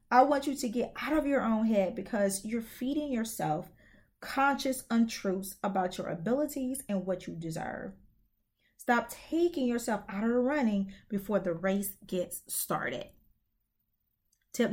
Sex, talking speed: female, 145 wpm